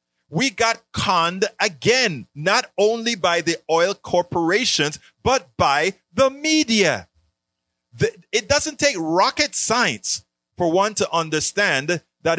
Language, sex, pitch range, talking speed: English, male, 135-205 Hz, 120 wpm